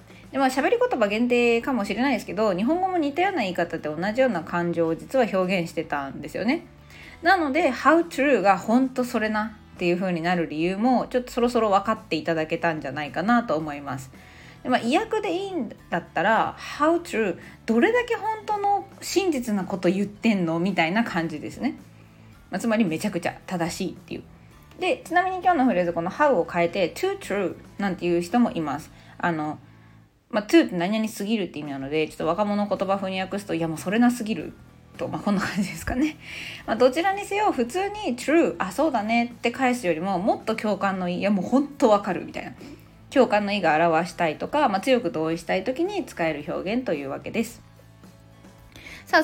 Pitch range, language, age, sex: 170-265 Hz, Japanese, 20-39, female